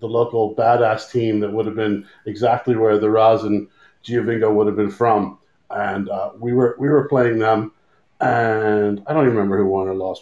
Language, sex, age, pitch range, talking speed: English, male, 40-59, 110-150 Hz, 205 wpm